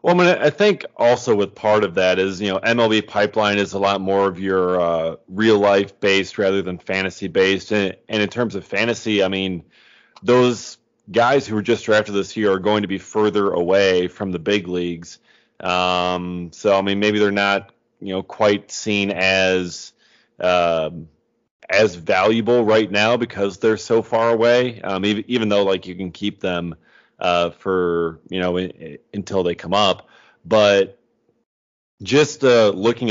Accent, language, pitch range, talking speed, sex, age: American, English, 95-110 Hz, 175 wpm, male, 30-49